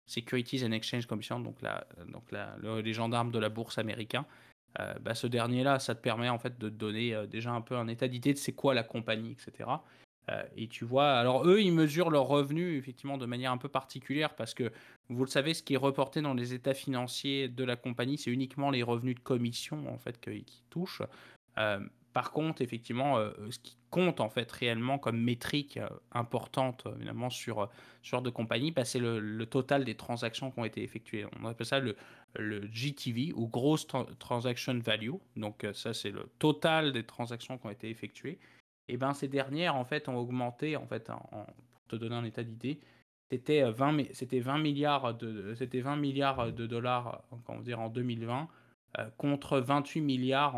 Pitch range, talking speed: 115-140 Hz, 200 wpm